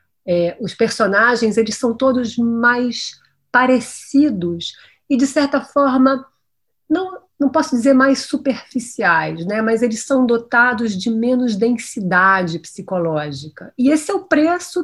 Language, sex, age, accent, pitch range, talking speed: Portuguese, female, 40-59, Brazilian, 200-255 Hz, 120 wpm